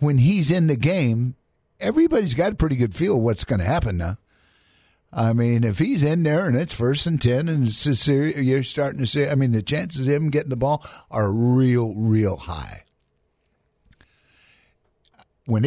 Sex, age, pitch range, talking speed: male, 50-69, 115-150 Hz, 190 wpm